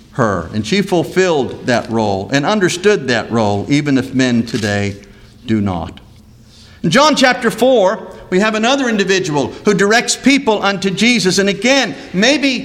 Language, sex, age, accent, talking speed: English, male, 50-69, American, 150 wpm